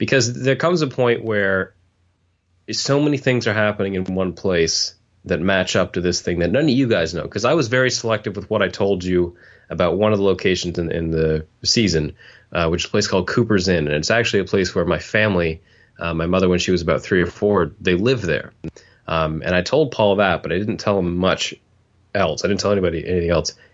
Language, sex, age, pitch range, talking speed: English, male, 30-49, 90-110 Hz, 235 wpm